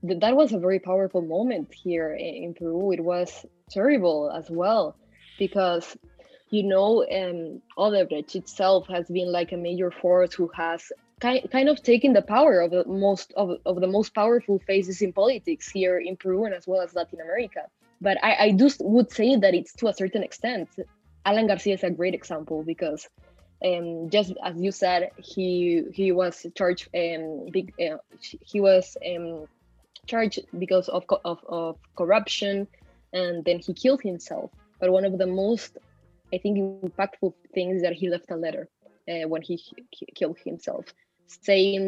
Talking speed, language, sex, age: 175 wpm, English, female, 20-39